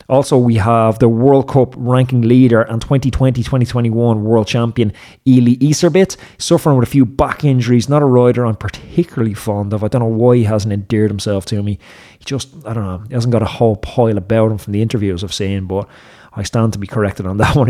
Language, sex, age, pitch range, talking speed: English, male, 20-39, 105-125 Hz, 220 wpm